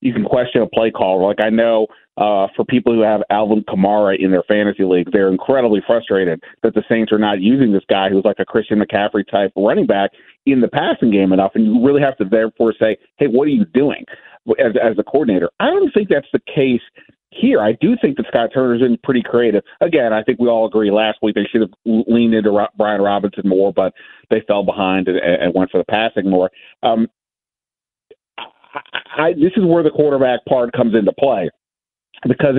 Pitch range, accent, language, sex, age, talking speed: 105-155 Hz, American, English, male, 40-59, 215 wpm